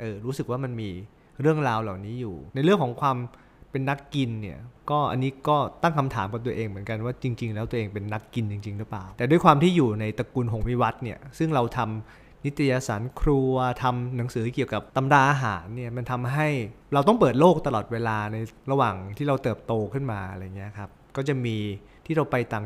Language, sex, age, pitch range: Thai, male, 20-39, 115-145 Hz